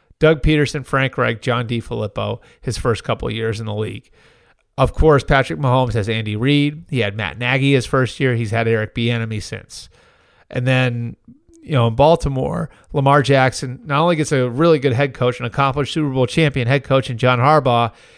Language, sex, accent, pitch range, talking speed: English, male, American, 120-150 Hz, 200 wpm